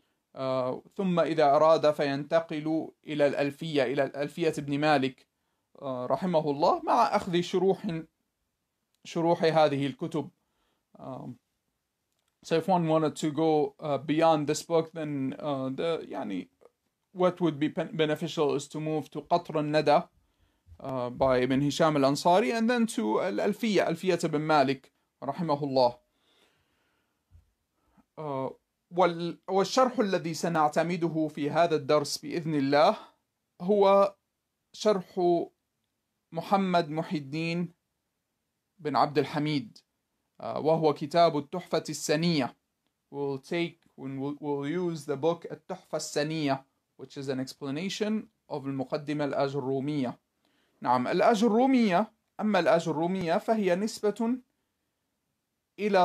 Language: English